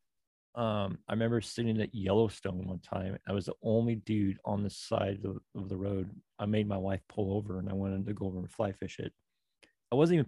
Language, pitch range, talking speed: English, 95-115 Hz, 230 wpm